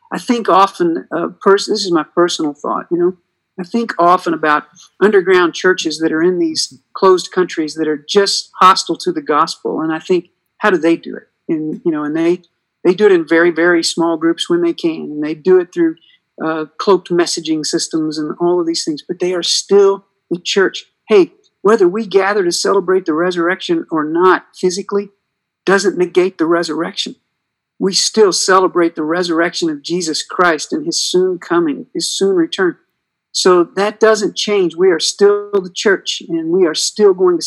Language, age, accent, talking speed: English, 50-69, American, 190 wpm